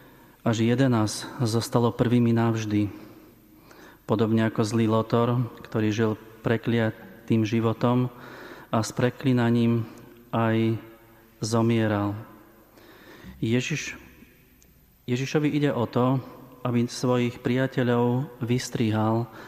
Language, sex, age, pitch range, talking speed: Slovak, male, 30-49, 110-125 Hz, 85 wpm